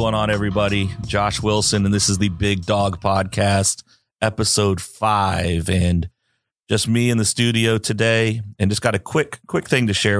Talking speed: 175 wpm